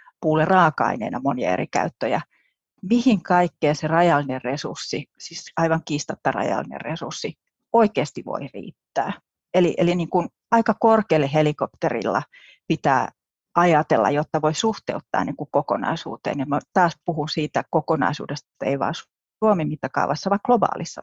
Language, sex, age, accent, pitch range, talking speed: Finnish, female, 30-49, native, 150-185 Hz, 130 wpm